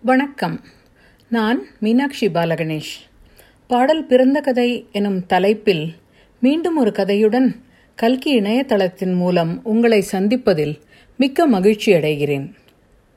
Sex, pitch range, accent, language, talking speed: female, 190-255 Hz, native, Tamil, 90 wpm